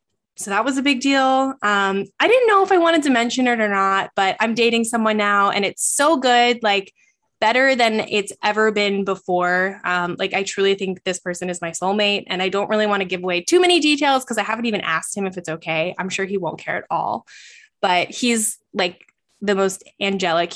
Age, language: 10-29, English